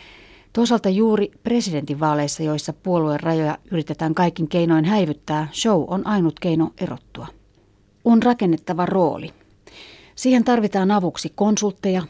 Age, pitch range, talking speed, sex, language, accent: 30-49, 155-195 Hz, 110 wpm, female, Finnish, native